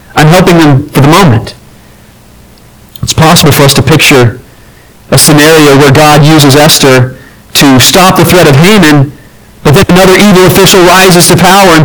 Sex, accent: male, American